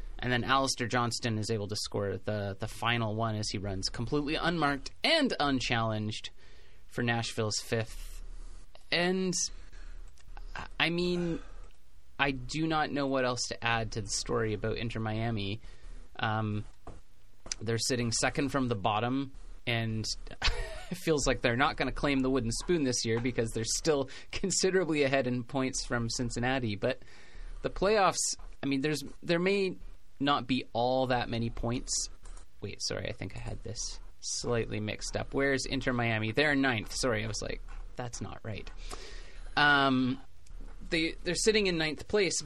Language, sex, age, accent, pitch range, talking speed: English, male, 30-49, American, 110-145 Hz, 155 wpm